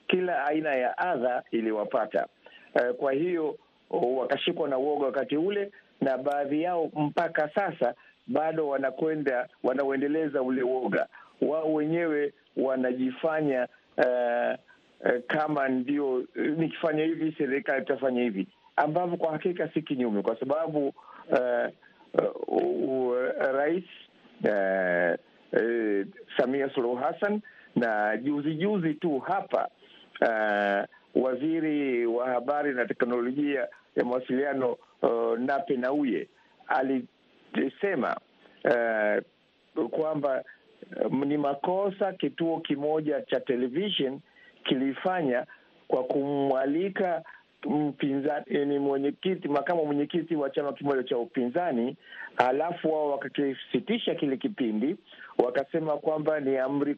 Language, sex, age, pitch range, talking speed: Swahili, male, 50-69, 130-160 Hz, 100 wpm